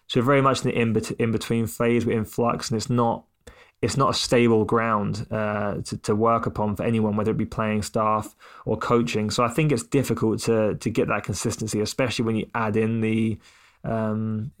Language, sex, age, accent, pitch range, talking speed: English, male, 20-39, British, 110-125 Hz, 205 wpm